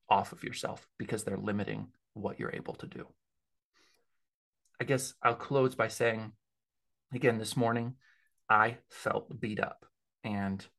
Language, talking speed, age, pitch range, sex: English, 140 wpm, 30-49, 110-125 Hz, male